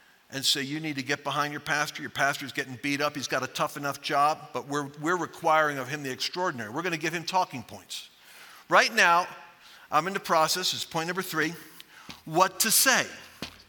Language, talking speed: English, 215 wpm